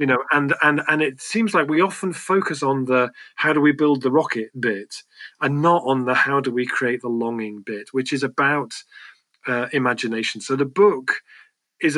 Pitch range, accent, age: 120-140 Hz, British, 40-59